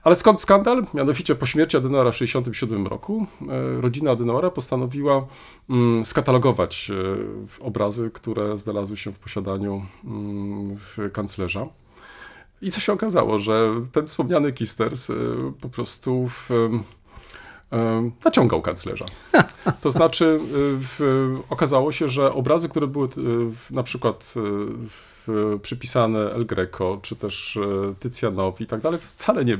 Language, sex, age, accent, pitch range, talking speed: Polish, male, 40-59, native, 105-130 Hz, 110 wpm